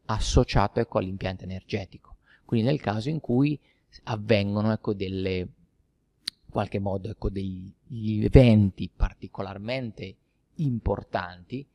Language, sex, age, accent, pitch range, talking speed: Italian, male, 30-49, native, 95-120 Hz, 100 wpm